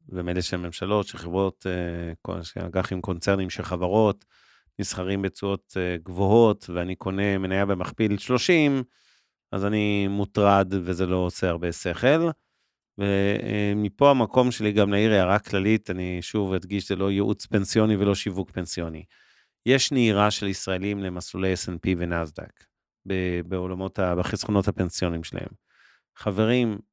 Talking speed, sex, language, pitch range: 125 wpm, male, Hebrew, 95-105 Hz